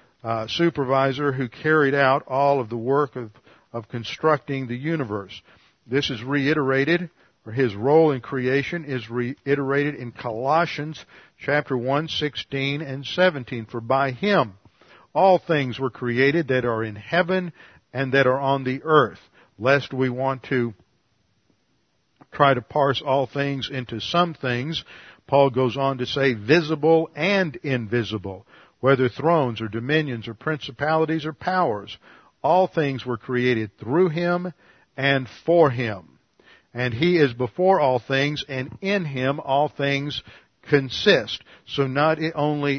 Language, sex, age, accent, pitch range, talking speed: English, male, 50-69, American, 120-150 Hz, 140 wpm